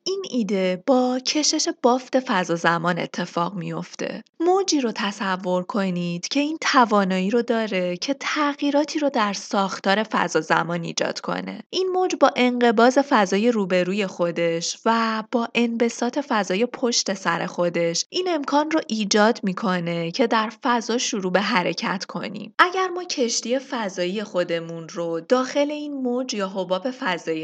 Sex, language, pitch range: female, Persian, 185-270 Hz